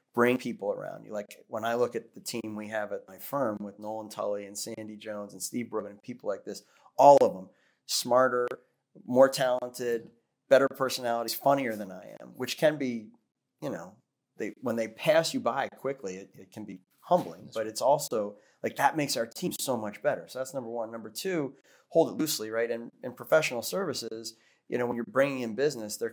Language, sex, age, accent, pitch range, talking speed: English, male, 30-49, American, 110-130 Hz, 210 wpm